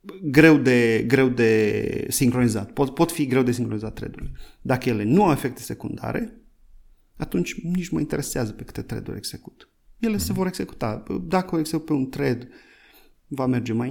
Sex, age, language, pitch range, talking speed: male, 30-49, Romanian, 110-155 Hz, 170 wpm